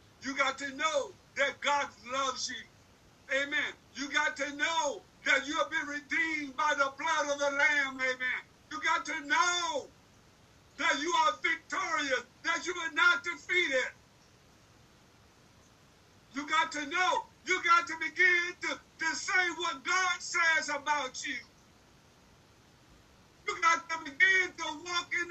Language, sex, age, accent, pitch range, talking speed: English, male, 50-69, American, 295-350 Hz, 145 wpm